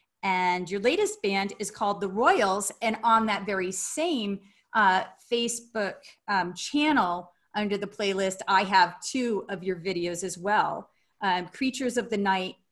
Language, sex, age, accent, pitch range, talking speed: English, female, 30-49, American, 195-255 Hz, 155 wpm